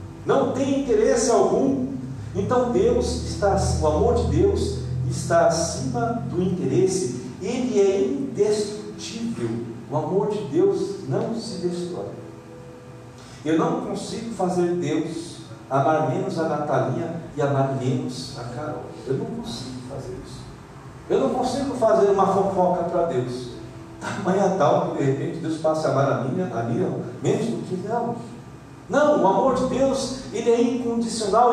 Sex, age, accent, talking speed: male, 50-69, Brazilian, 145 wpm